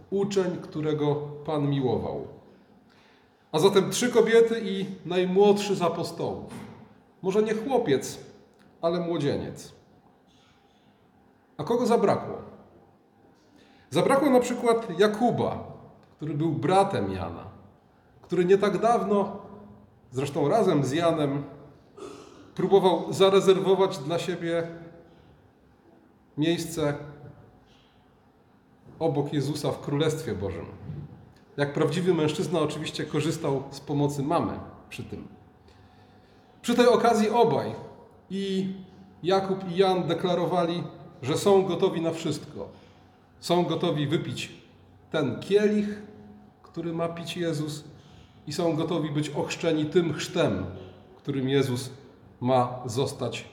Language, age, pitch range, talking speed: Polish, 30-49, 145-190 Hz, 100 wpm